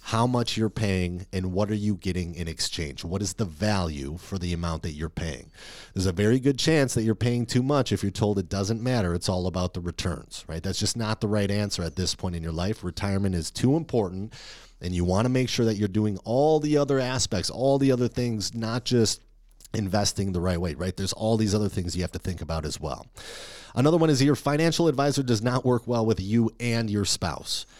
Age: 30-49